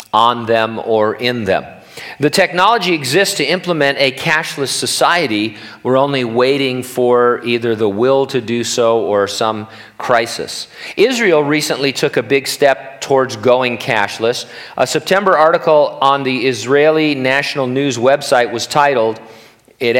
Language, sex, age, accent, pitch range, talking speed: English, male, 40-59, American, 120-145 Hz, 140 wpm